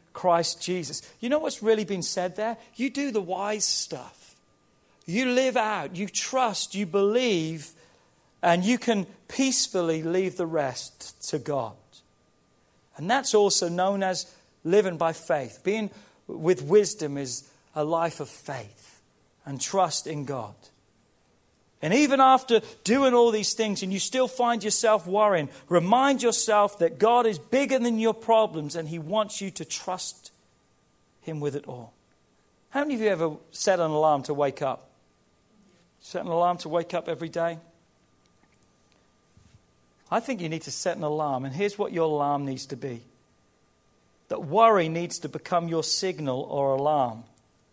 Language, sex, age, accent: English, male, 40-59, British